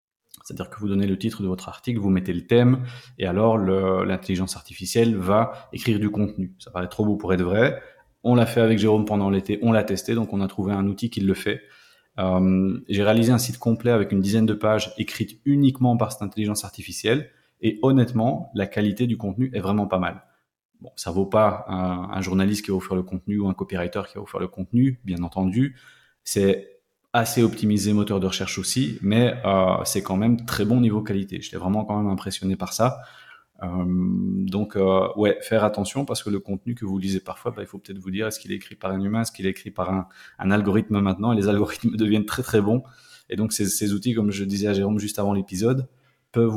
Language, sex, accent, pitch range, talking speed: French, male, French, 95-115 Hz, 230 wpm